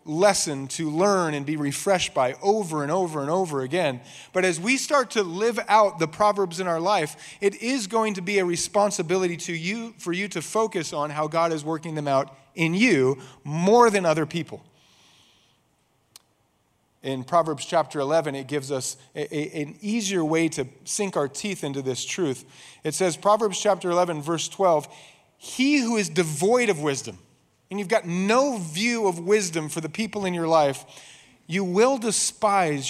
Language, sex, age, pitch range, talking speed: English, male, 30-49, 150-200 Hz, 180 wpm